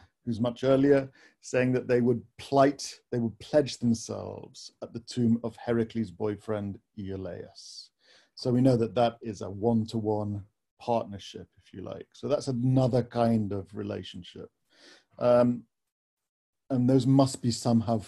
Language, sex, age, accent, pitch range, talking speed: English, male, 40-59, British, 110-125 Hz, 145 wpm